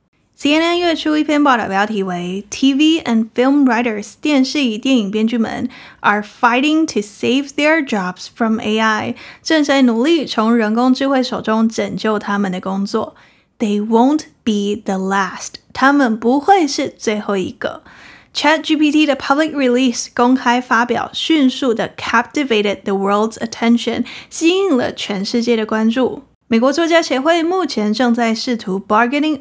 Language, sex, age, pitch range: Chinese, female, 10-29, 220-290 Hz